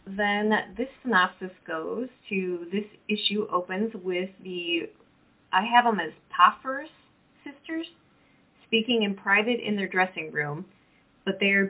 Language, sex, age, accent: English, female, 20-39, American